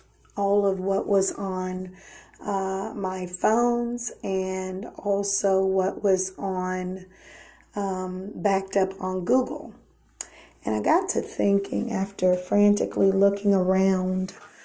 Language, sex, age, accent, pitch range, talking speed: English, female, 40-59, American, 190-205 Hz, 110 wpm